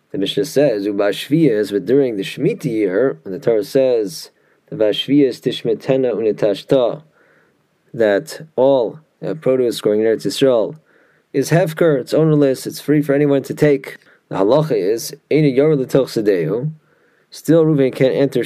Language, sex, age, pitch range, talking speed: English, male, 20-39, 115-155 Hz, 125 wpm